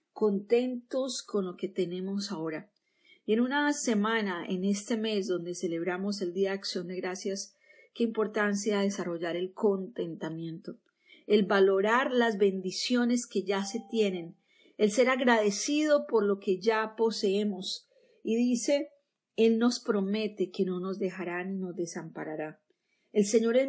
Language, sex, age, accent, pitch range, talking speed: Spanish, female, 40-59, Colombian, 195-240 Hz, 145 wpm